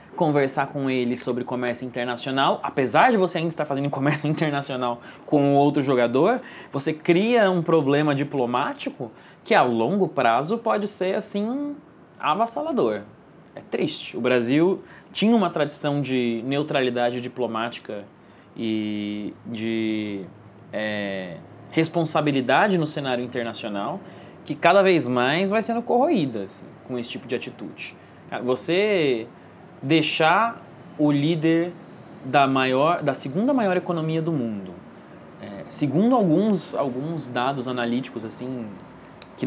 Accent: Brazilian